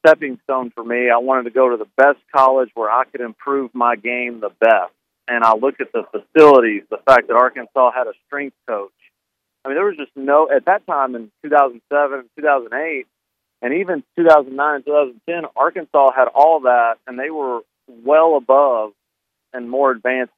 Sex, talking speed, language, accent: male, 185 wpm, English, American